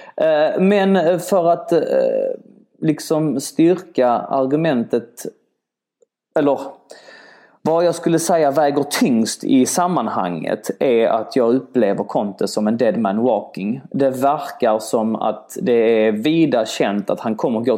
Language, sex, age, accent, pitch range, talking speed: English, male, 30-49, Swedish, 135-210 Hz, 125 wpm